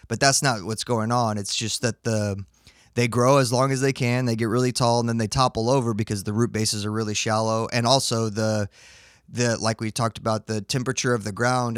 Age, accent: 20-39, American